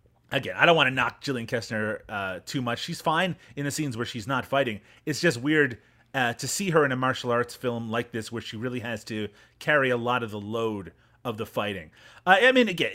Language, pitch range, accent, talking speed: English, 115-145 Hz, American, 240 wpm